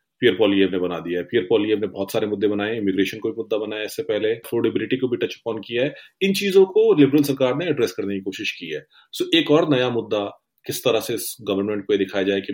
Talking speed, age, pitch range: 250 wpm, 30-49, 100-140 Hz